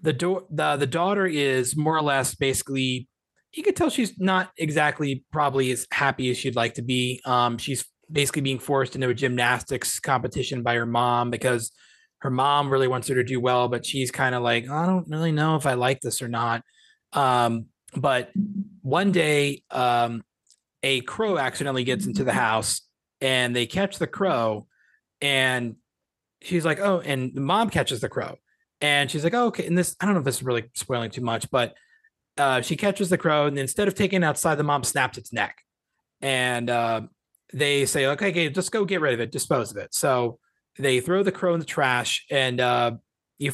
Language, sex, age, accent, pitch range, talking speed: English, male, 30-49, American, 125-170 Hz, 200 wpm